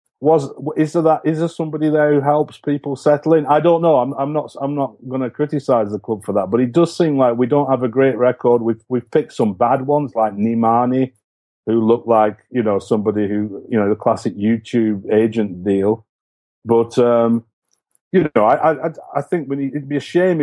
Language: English